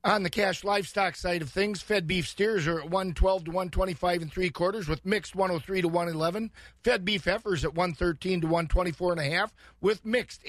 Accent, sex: American, male